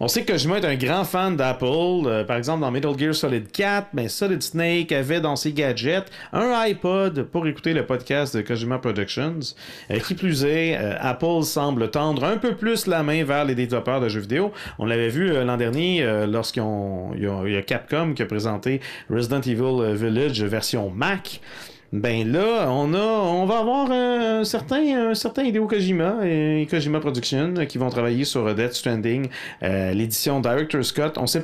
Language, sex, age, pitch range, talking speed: French, male, 40-59, 120-170 Hz, 190 wpm